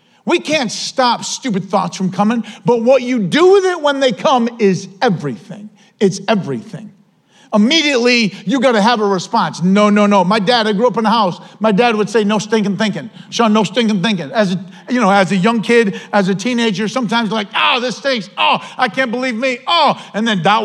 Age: 50-69